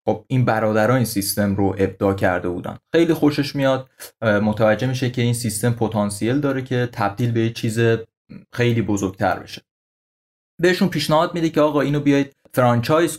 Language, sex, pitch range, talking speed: Persian, male, 115-150 Hz, 155 wpm